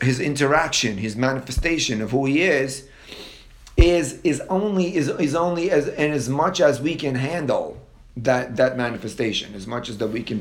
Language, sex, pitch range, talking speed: English, male, 130-175 Hz, 180 wpm